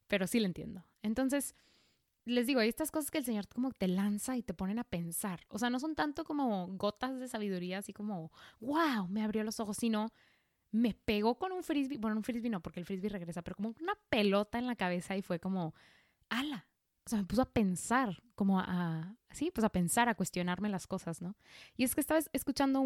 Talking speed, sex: 225 wpm, female